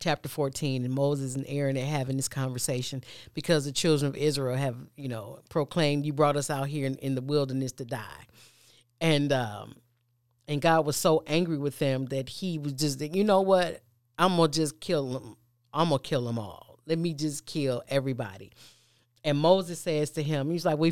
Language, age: English, 40-59